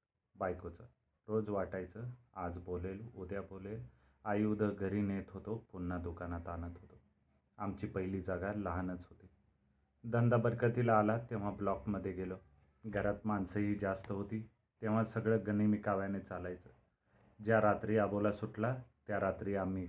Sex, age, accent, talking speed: male, 30-49, native, 130 wpm